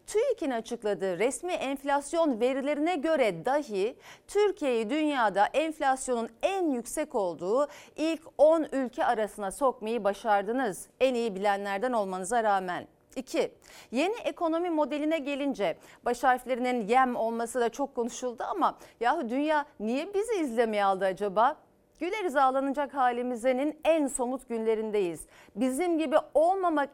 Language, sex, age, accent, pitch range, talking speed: Turkish, female, 40-59, native, 225-300 Hz, 120 wpm